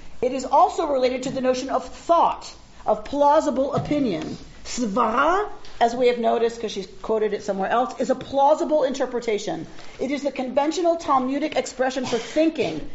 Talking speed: 160 wpm